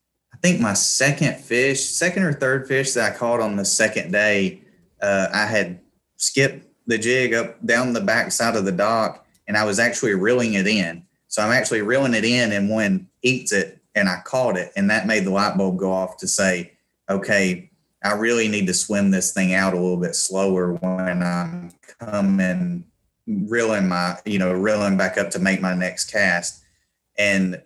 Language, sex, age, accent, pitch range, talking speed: English, male, 30-49, American, 90-110 Hz, 195 wpm